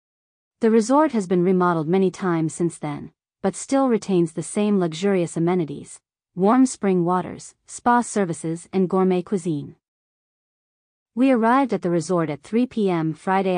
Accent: American